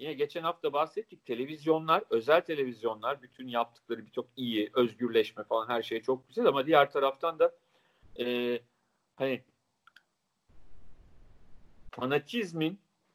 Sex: male